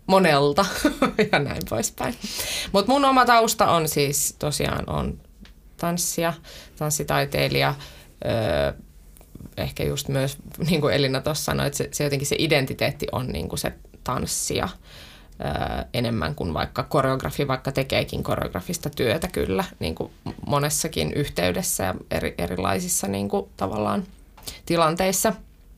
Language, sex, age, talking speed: Finnish, female, 20-39, 130 wpm